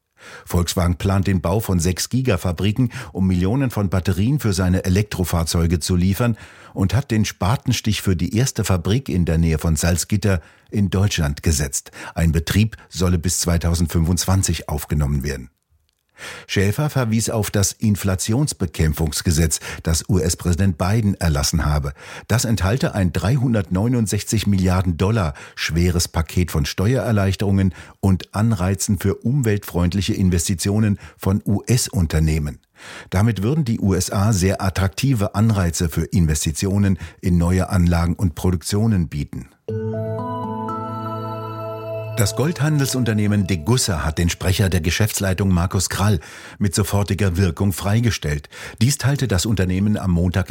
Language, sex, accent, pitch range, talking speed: German, male, German, 85-110 Hz, 120 wpm